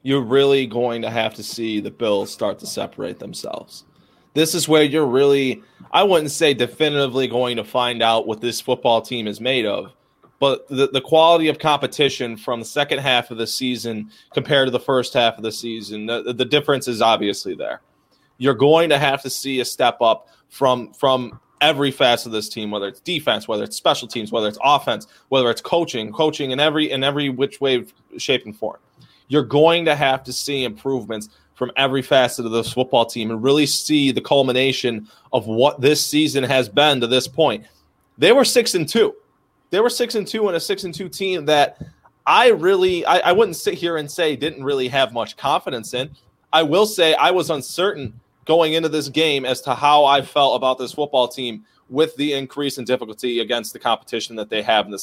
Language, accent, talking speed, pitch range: English, American, 205 wpm, 120-150 Hz